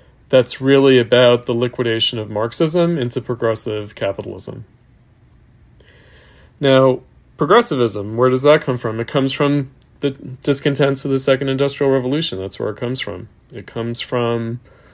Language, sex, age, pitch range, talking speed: English, male, 40-59, 120-140 Hz, 140 wpm